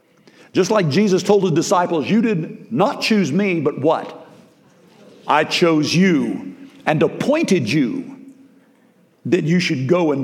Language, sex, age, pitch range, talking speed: English, male, 50-69, 150-235 Hz, 140 wpm